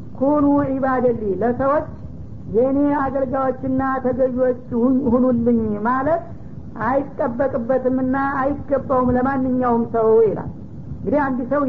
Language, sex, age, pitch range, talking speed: Amharic, female, 50-69, 255-275 Hz, 75 wpm